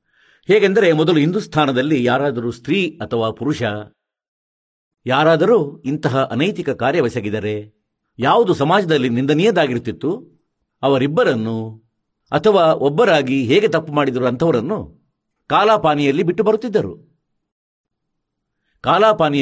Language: Kannada